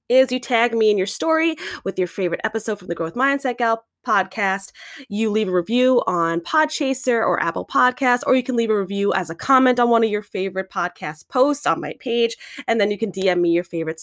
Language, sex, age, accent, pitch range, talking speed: English, female, 20-39, American, 180-250 Hz, 225 wpm